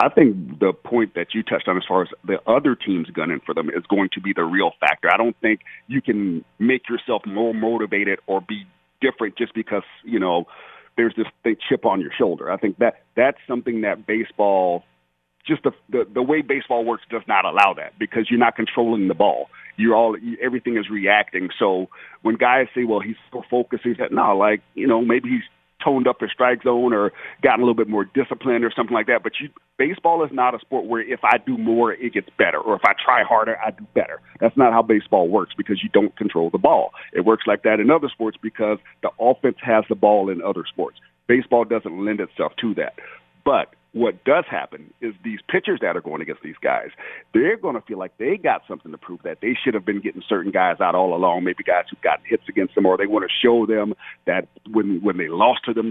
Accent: American